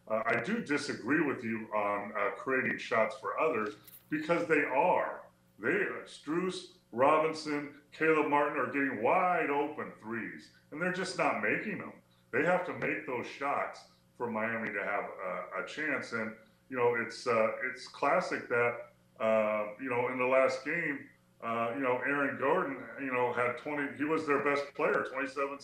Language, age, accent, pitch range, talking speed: English, 30-49, American, 95-140 Hz, 175 wpm